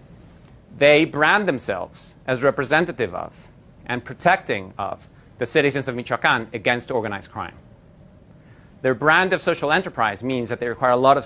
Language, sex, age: English, male, 40-59